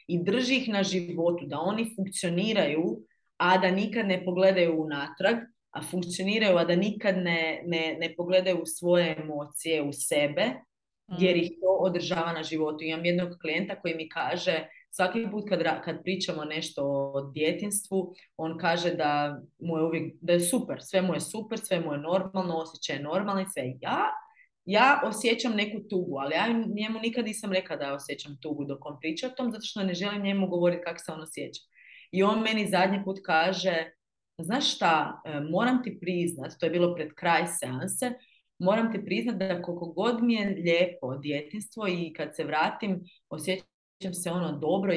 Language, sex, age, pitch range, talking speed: Croatian, female, 30-49, 165-205 Hz, 180 wpm